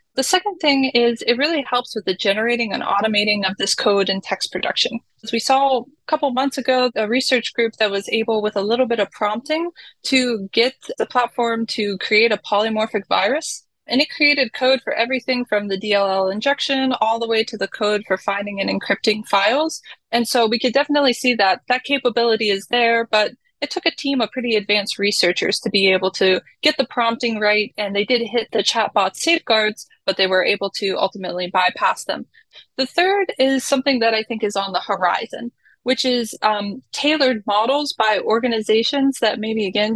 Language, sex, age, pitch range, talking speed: English, female, 20-39, 210-265 Hz, 195 wpm